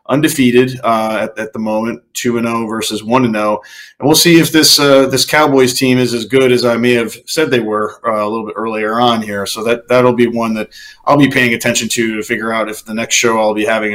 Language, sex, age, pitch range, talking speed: English, male, 30-49, 110-130 Hz, 260 wpm